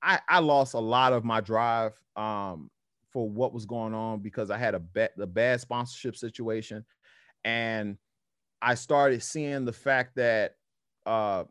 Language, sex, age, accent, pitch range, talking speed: English, male, 30-49, American, 110-135 Hz, 155 wpm